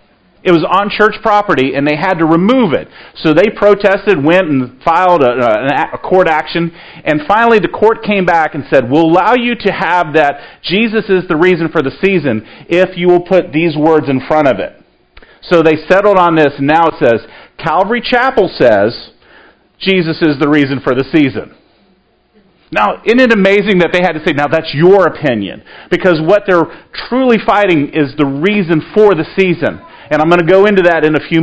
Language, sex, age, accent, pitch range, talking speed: English, male, 40-59, American, 160-210 Hz, 200 wpm